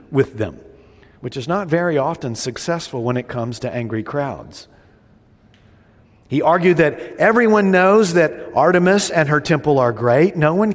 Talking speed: 155 wpm